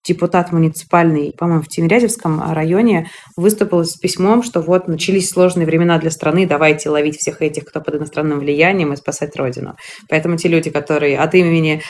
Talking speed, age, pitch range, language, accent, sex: 165 wpm, 20-39, 155-190 Hz, Russian, native, female